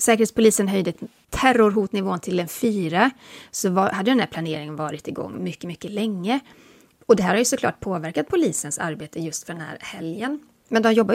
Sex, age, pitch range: female, 30-49, 170-235 Hz